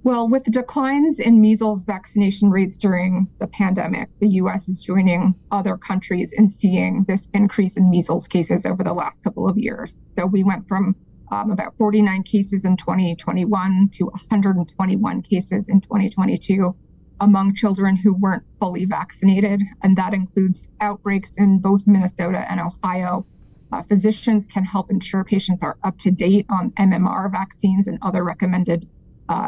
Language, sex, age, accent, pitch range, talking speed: English, female, 20-39, American, 185-205 Hz, 155 wpm